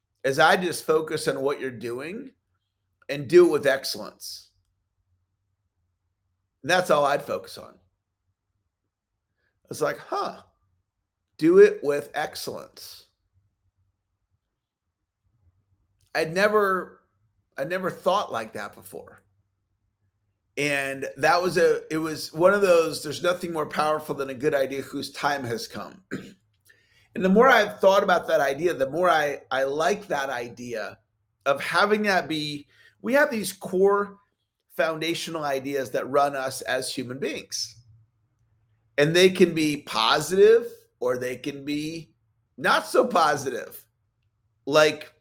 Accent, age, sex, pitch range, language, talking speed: American, 40-59, male, 105-165 Hz, English, 130 wpm